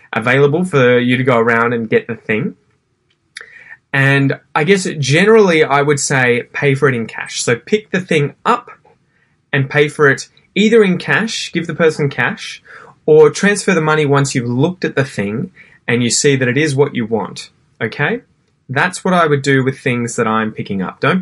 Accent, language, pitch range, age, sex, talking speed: Australian, English, 120-155 Hz, 20-39, male, 200 wpm